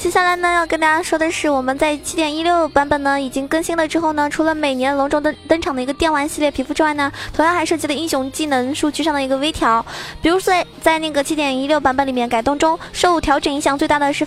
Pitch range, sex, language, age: 275-320 Hz, female, Chinese, 20-39